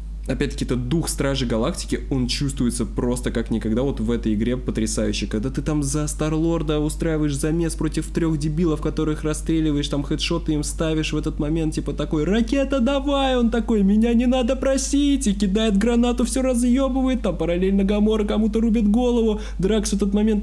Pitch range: 125-180 Hz